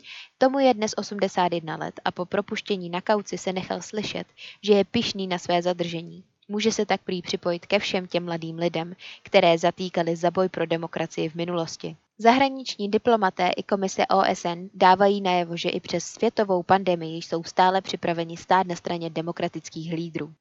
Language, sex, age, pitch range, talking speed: Czech, female, 20-39, 170-200 Hz, 165 wpm